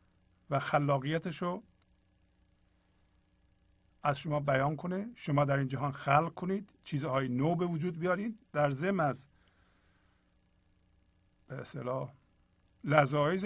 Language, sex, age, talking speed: Persian, male, 50-69, 95 wpm